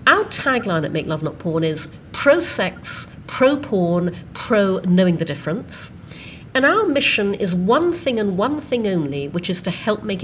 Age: 50-69